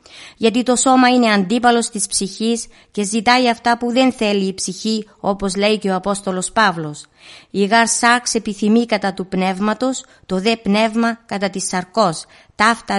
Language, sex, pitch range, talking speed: Greek, female, 195-235 Hz, 155 wpm